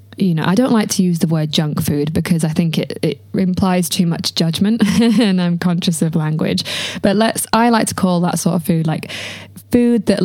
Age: 20-39